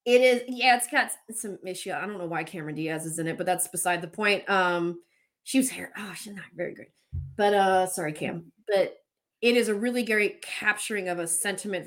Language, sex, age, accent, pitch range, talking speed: English, female, 20-39, American, 190-295 Hz, 220 wpm